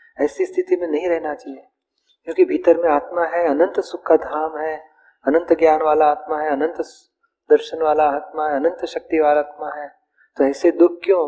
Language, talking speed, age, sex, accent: Hindi, 185 wpm, 40-59, male, native